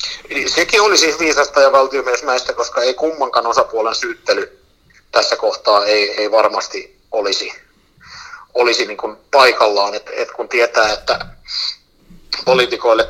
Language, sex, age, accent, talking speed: Finnish, male, 60-79, native, 120 wpm